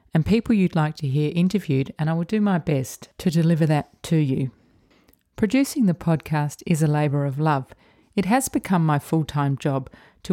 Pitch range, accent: 140-180 Hz, Australian